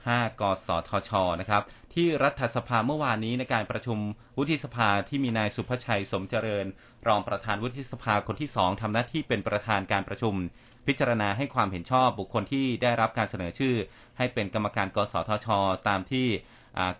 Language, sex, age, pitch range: Thai, male, 30-49, 100-120 Hz